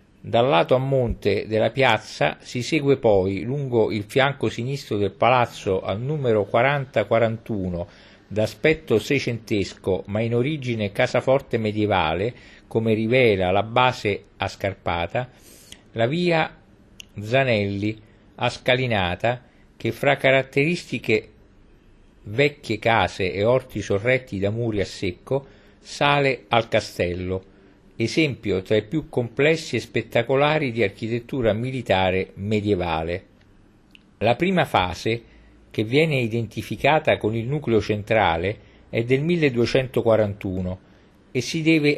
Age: 50-69